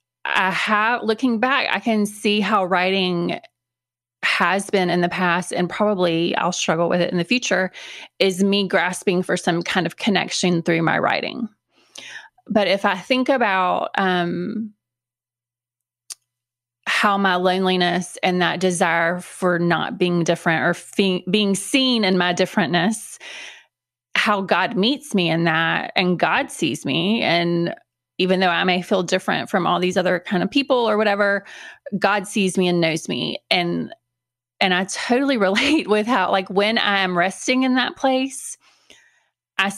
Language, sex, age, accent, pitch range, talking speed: English, female, 20-39, American, 175-210 Hz, 155 wpm